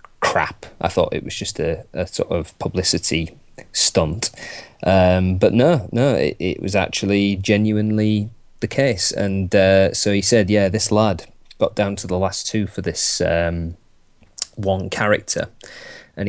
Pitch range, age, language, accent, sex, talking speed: 90-105 Hz, 20-39, English, British, male, 160 wpm